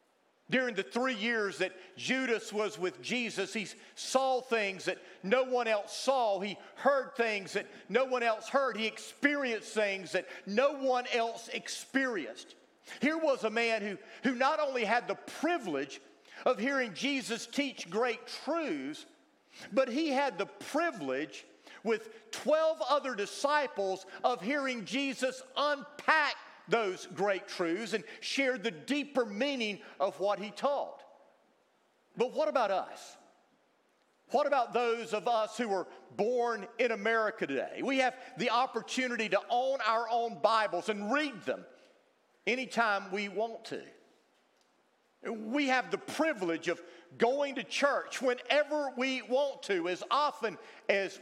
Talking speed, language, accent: 140 wpm, English, American